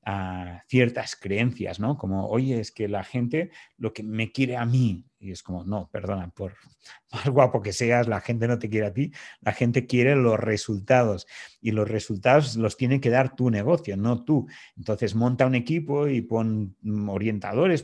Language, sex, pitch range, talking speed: Spanish, male, 105-130 Hz, 190 wpm